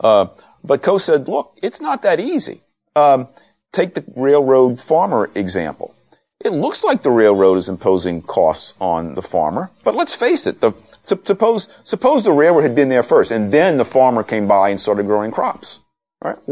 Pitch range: 100-140 Hz